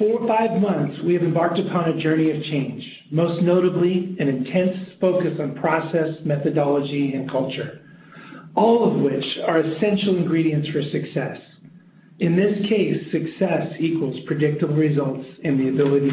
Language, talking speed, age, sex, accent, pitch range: English, 145 wpm, 50-69, male, American, 150-180 Hz